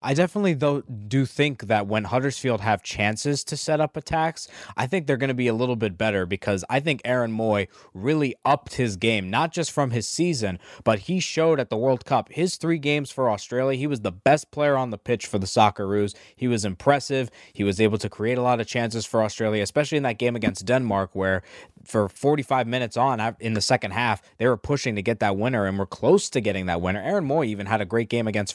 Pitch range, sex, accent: 100-130 Hz, male, American